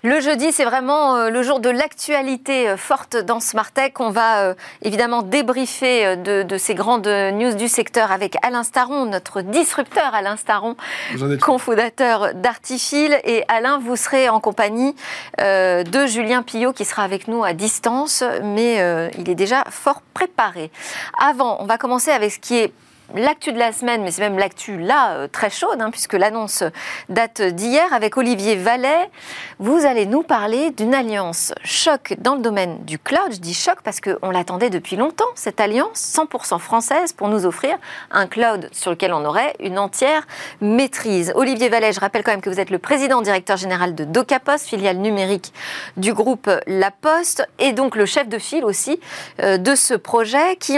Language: French